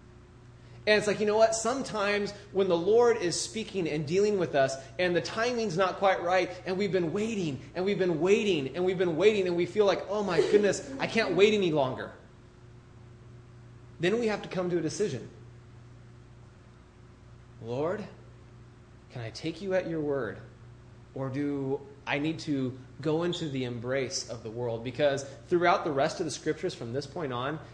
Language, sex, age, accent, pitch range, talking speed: English, male, 20-39, American, 120-190 Hz, 185 wpm